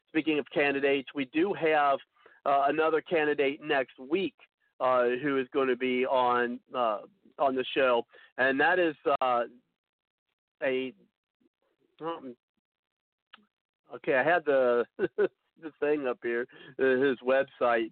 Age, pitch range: 50-69, 125-165 Hz